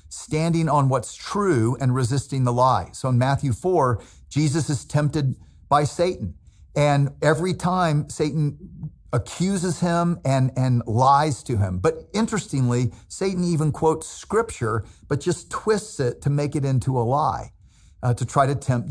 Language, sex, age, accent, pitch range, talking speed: English, male, 50-69, American, 110-150 Hz, 155 wpm